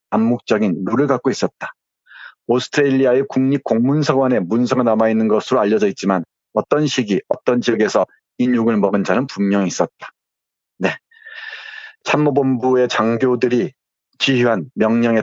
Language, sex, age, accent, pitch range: Korean, male, 30-49, native, 105-125 Hz